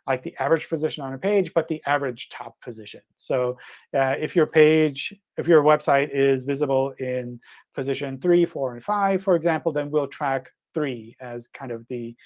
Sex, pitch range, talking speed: male, 130-155 Hz, 185 wpm